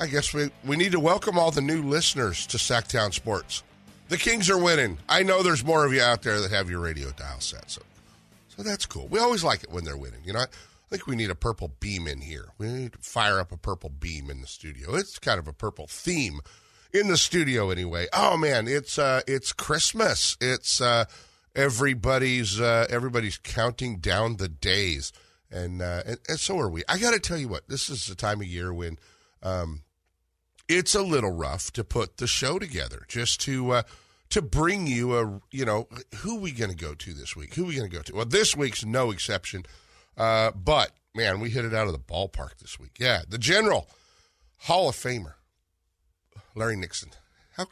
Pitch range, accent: 85-130 Hz, American